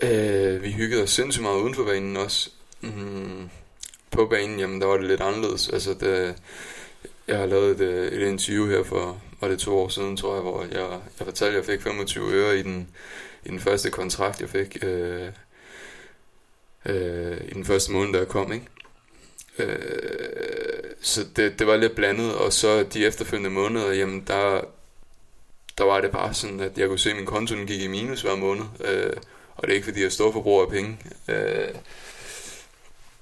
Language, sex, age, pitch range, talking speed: Danish, male, 20-39, 95-110 Hz, 195 wpm